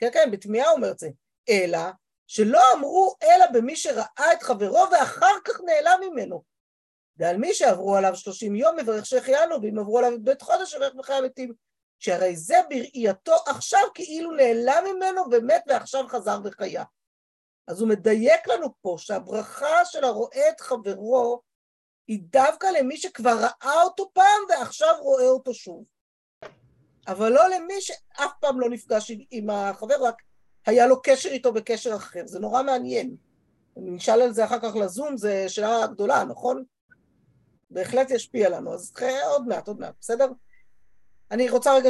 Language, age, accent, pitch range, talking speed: Hebrew, 50-69, native, 220-310 Hz, 160 wpm